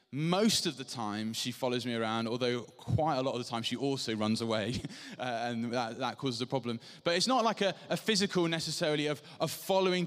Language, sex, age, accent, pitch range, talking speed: English, male, 20-39, British, 125-175 Hz, 220 wpm